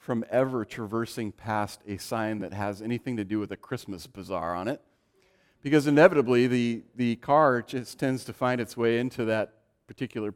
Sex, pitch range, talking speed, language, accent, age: male, 110-130 Hz, 180 wpm, English, American, 40-59